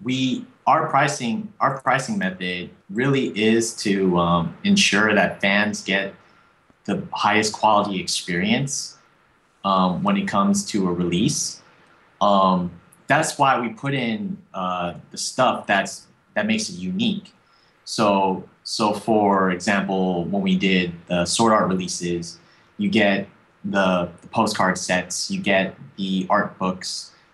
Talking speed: 135 wpm